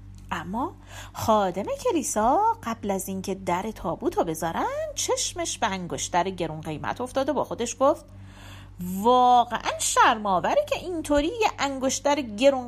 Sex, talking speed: female, 125 wpm